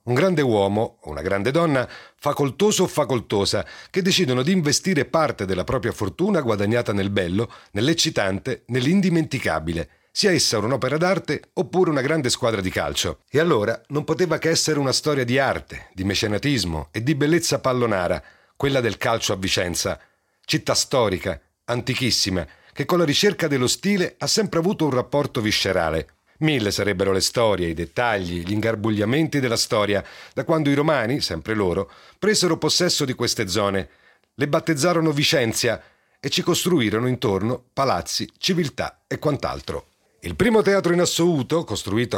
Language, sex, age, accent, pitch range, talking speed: Italian, male, 40-59, native, 100-160 Hz, 150 wpm